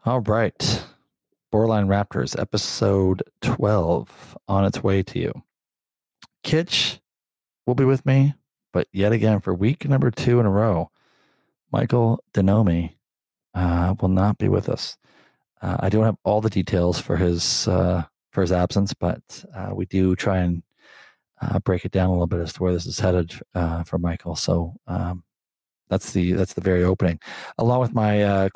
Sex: male